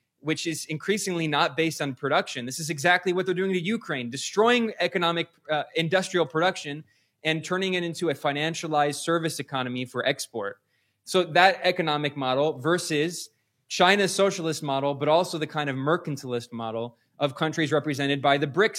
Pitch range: 140-180 Hz